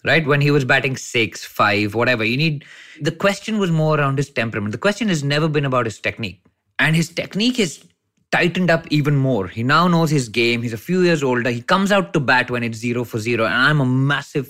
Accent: Indian